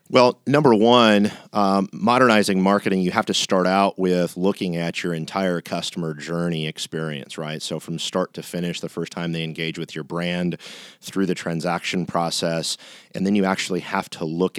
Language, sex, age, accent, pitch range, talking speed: English, male, 40-59, American, 80-95 Hz, 180 wpm